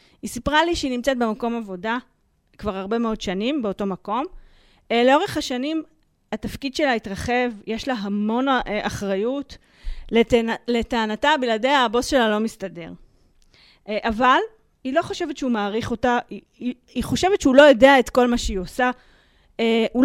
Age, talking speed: 30-49, 145 wpm